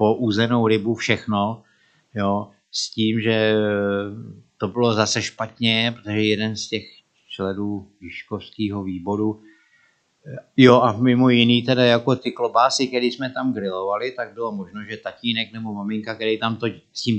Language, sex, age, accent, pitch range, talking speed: Czech, male, 50-69, native, 100-115 Hz, 145 wpm